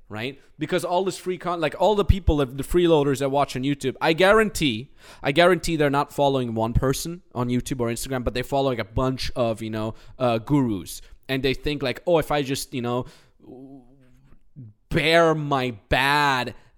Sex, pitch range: male, 115-150 Hz